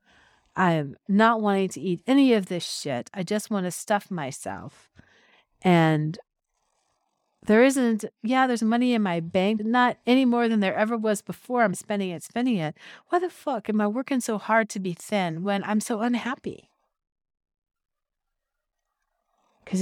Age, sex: 50-69, female